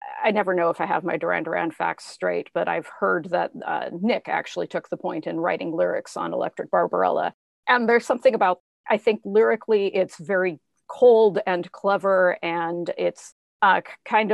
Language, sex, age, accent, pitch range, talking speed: English, female, 40-59, American, 180-215 Hz, 180 wpm